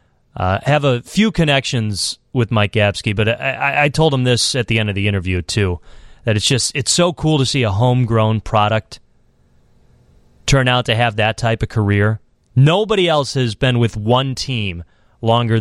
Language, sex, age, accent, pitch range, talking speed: English, male, 30-49, American, 110-145 Hz, 185 wpm